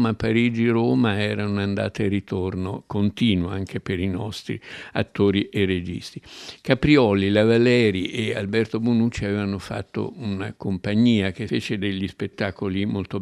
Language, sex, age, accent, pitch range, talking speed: Italian, male, 60-79, native, 100-115 Hz, 130 wpm